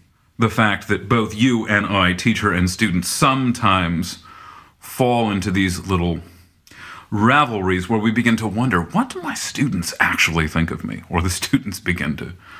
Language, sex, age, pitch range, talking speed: English, male, 40-59, 85-105 Hz, 160 wpm